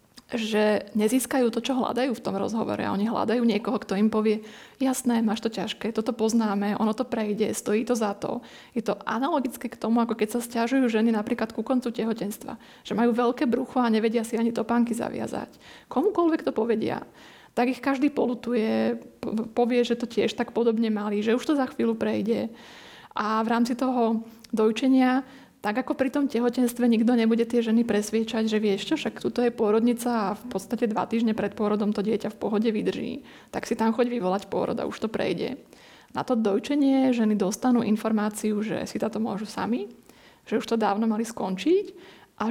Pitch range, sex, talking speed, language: 215-245 Hz, female, 190 wpm, Slovak